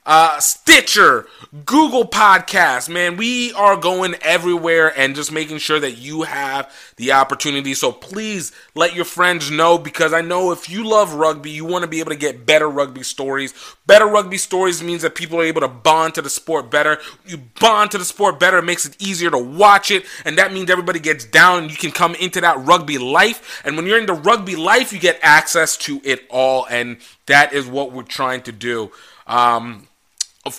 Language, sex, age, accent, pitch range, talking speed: English, male, 30-49, American, 145-185 Hz, 205 wpm